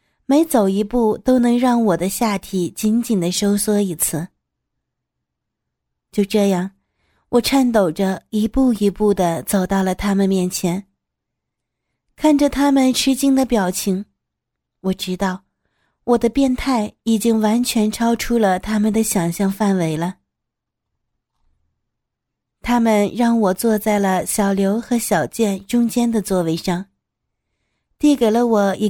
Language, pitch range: Chinese, 190-235 Hz